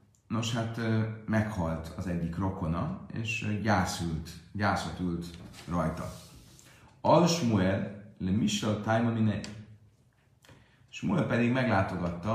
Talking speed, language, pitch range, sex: 85 wpm, Hungarian, 90-115 Hz, male